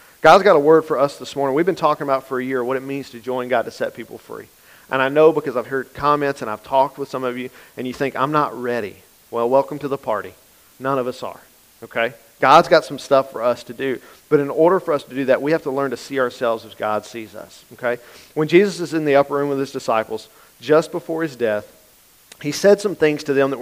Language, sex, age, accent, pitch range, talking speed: English, male, 40-59, American, 130-155 Hz, 265 wpm